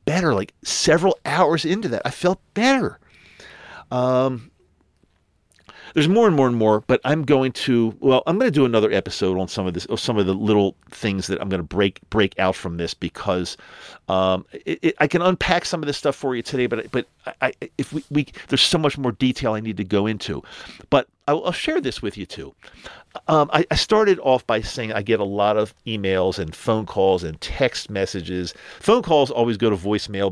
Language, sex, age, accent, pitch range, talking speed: English, male, 50-69, American, 95-130 Hz, 215 wpm